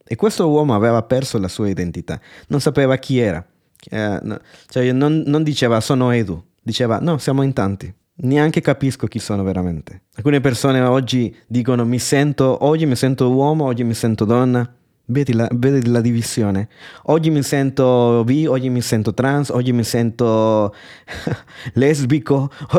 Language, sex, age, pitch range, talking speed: Italian, male, 20-39, 110-150 Hz, 160 wpm